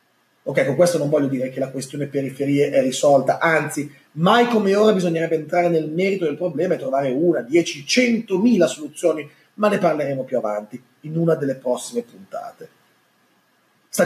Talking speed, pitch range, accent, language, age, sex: 165 wpm, 155-220 Hz, native, Italian, 30-49, male